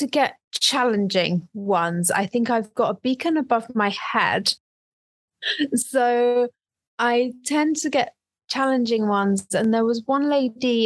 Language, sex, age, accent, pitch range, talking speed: English, female, 30-49, British, 200-245 Hz, 135 wpm